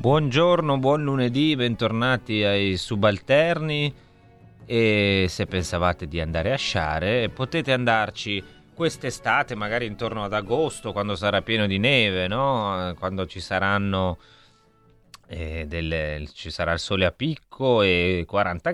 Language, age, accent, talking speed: Italian, 30-49, native, 125 wpm